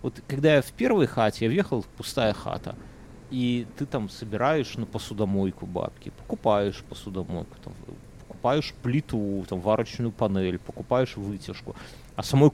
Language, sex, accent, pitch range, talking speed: Russian, male, native, 105-135 Hz, 140 wpm